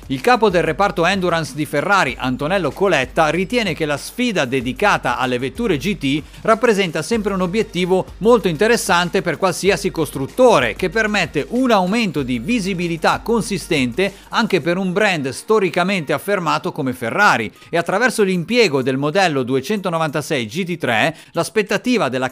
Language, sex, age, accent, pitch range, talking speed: Italian, male, 50-69, native, 145-200 Hz, 135 wpm